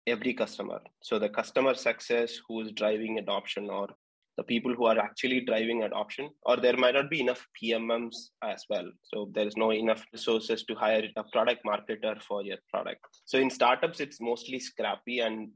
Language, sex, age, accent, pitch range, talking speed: English, male, 20-39, Indian, 110-120 Hz, 185 wpm